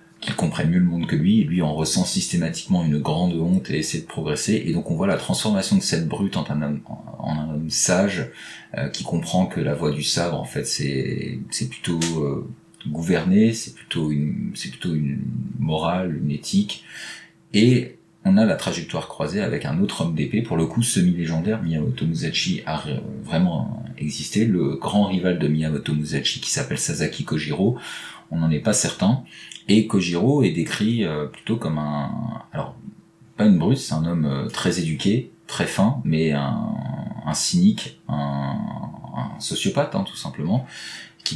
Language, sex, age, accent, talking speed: French, male, 40-59, French, 180 wpm